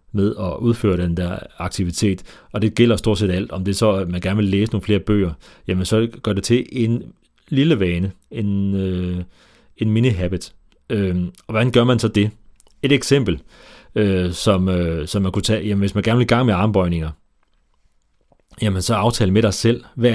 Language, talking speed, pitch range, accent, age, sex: Danish, 205 wpm, 90-115 Hz, native, 30-49, male